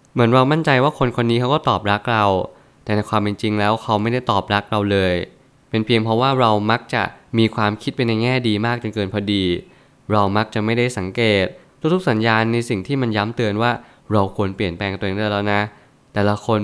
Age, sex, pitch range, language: 20-39, male, 105-125 Hz, Thai